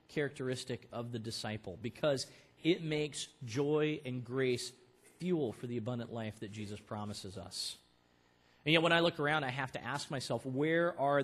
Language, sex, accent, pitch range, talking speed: English, male, American, 100-145 Hz, 170 wpm